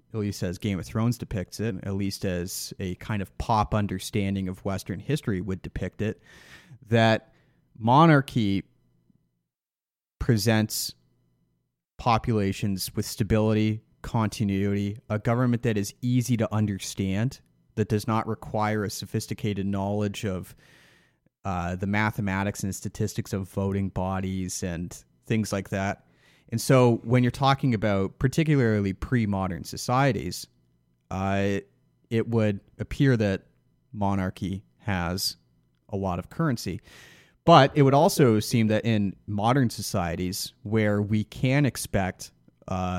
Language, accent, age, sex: English, American, 30-49, male